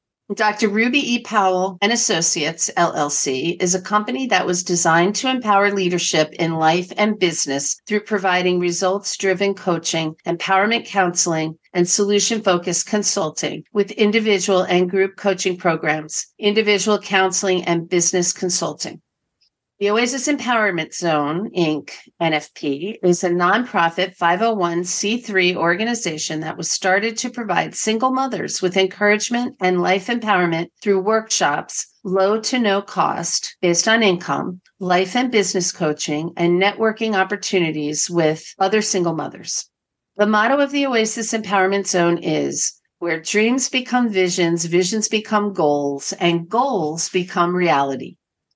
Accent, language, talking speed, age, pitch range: American, English, 125 wpm, 50-69, 170-210 Hz